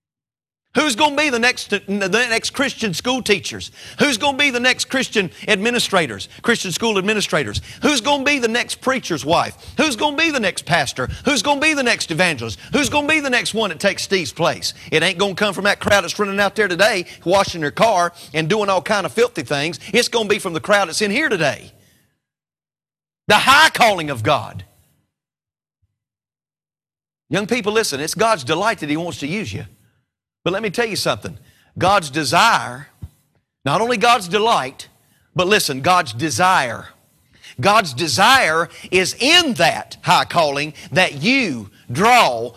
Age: 40-59